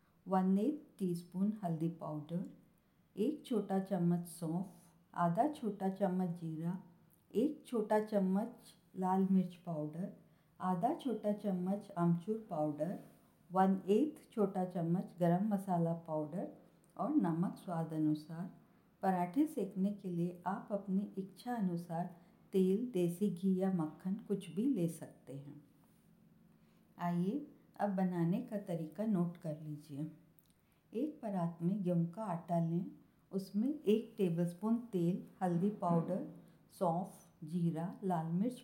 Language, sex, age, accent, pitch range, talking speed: Hindi, female, 50-69, native, 170-200 Hz, 120 wpm